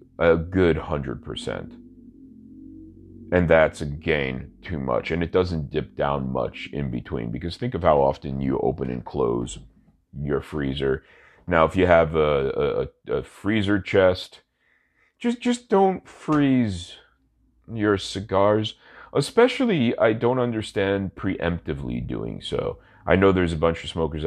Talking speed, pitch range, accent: 140 wpm, 75-120 Hz, American